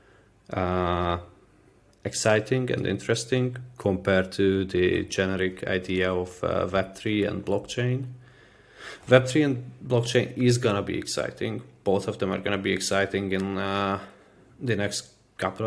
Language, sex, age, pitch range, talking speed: English, male, 20-39, 95-115 Hz, 135 wpm